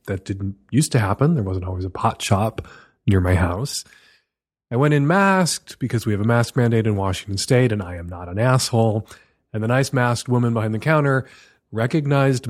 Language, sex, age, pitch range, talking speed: English, male, 30-49, 105-160 Hz, 200 wpm